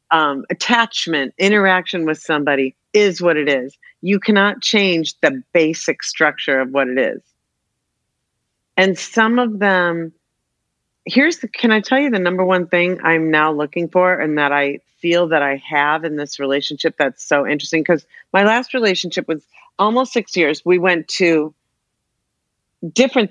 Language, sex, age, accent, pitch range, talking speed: English, female, 40-59, American, 150-220 Hz, 160 wpm